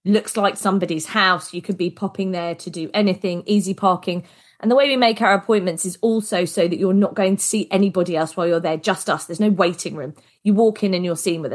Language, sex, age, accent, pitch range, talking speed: English, female, 20-39, British, 175-215 Hz, 250 wpm